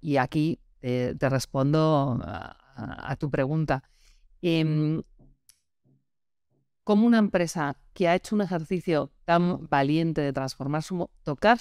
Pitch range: 135-180 Hz